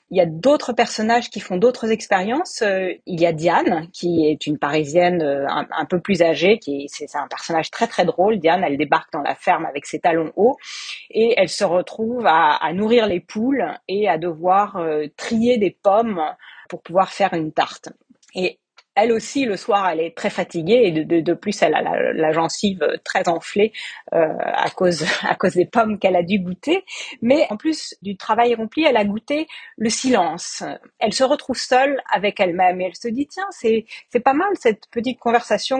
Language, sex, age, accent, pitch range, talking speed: French, female, 40-59, French, 180-265 Hz, 205 wpm